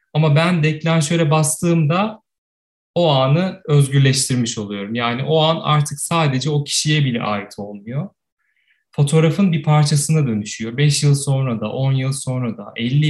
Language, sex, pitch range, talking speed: Turkish, male, 135-165 Hz, 140 wpm